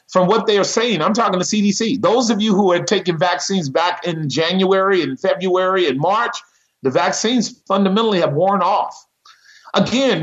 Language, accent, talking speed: English, American, 175 wpm